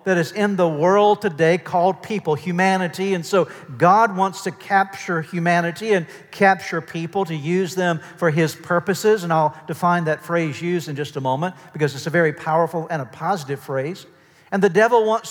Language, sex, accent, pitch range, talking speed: English, male, American, 150-190 Hz, 190 wpm